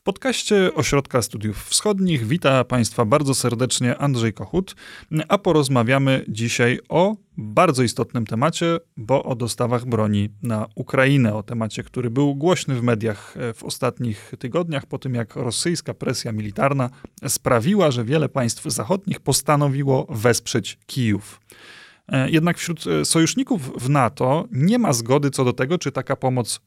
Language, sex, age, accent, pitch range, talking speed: Polish, male, 30-49, native, 120-155 Hz, 140 wpm